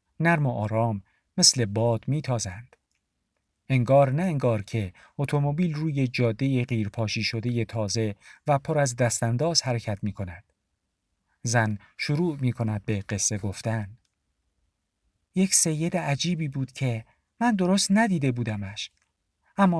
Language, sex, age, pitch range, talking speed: Persian, male, 50-69, 110-160 Hz, 125 wpm